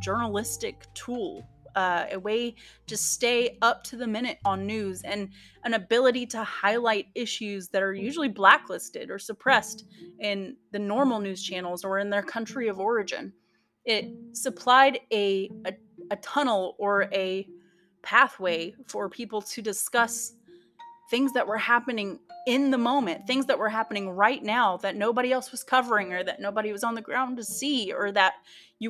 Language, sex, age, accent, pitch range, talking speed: English, female, 30-49, American, 195-260 Hz, 165 wpm